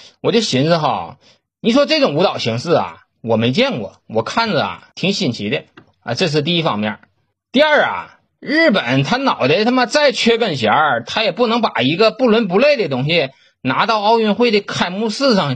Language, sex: Chinese, male